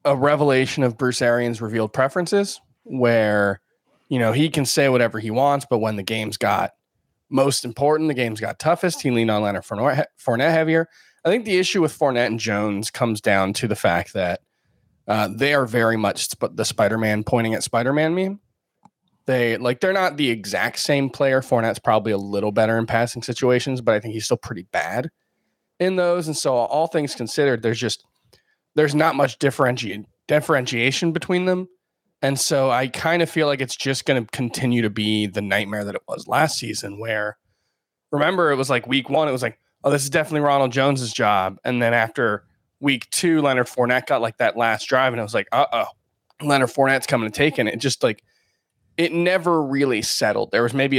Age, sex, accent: 20-39, male, American